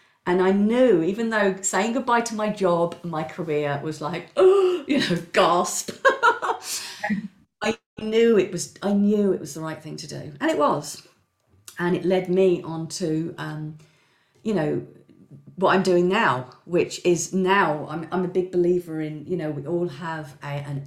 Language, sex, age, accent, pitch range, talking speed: English, female, 40-59, British, 155-190 Hz, 185 wpm